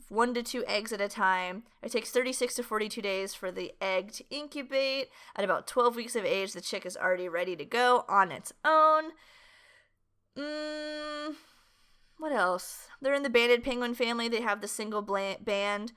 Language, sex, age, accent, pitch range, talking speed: English, female, 30-49, American, 190-255 Hz, 180 wpm